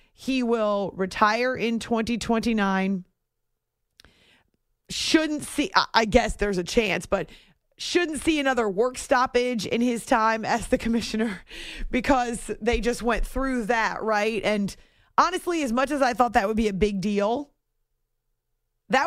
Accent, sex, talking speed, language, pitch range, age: American, female, 140 wpm, English, 190-250 Hz, 30-49